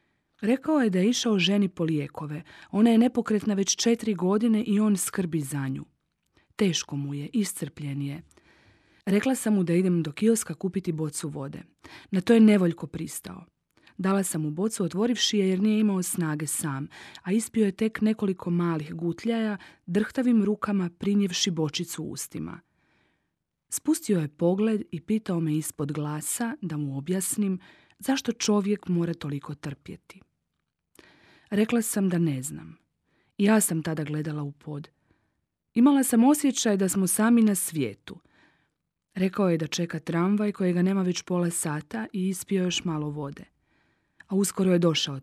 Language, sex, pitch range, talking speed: Croatian, female, 155-210 Hz, 155 wpm